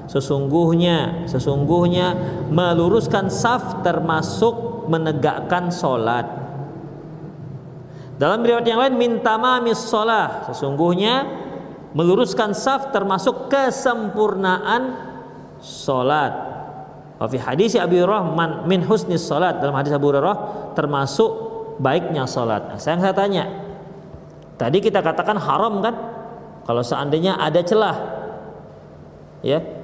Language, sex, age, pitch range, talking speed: Indonesian, male, 40-59, 160-235 Hz, 90 wpm